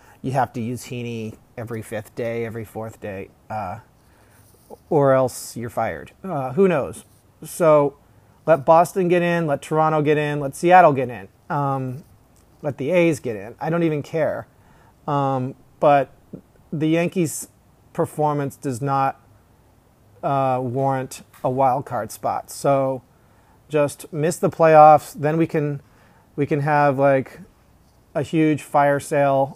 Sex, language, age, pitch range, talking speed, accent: male, English, 40-59, 125-150 Hz, 145 wpm, American